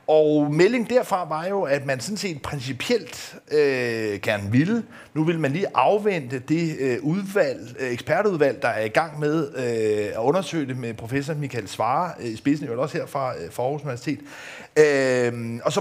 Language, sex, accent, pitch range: Danish, male, native, 130-170 Hz